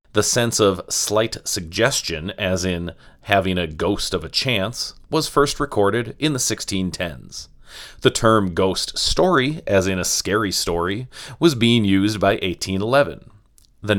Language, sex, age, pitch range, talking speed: English, male, 30-49, 95-120 Hz, 145 wpm